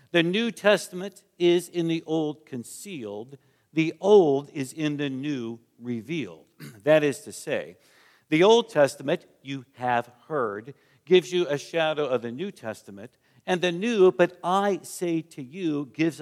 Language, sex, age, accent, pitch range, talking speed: English, male, 50-69, American, 125-170 Hz, 155 wpm